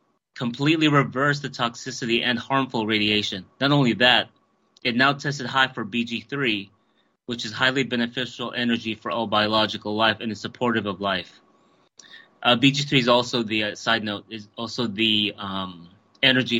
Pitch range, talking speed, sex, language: 105-125 Hz, 155 wpm, male, English